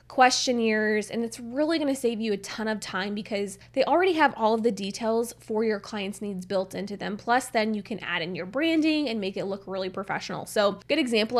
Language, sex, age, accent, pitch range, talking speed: English, female, 20-39, American, 200-245 Hz, 225 wpm